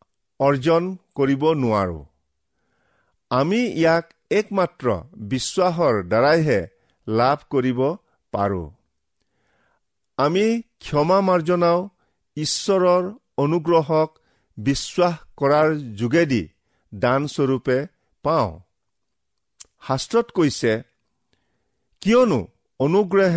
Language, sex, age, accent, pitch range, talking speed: English, male, 50-69, Indian, 130-185 Hz, 75 wpm